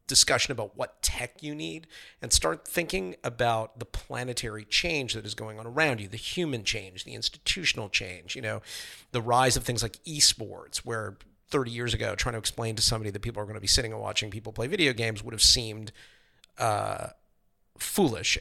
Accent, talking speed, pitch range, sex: American, 195 wpm, 105-125 Hz, male